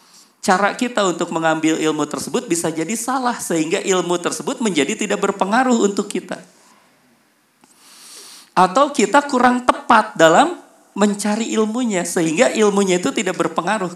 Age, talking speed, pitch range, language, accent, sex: 40-59, 125 wpm, 165-245 Hz, Indonesian, native, male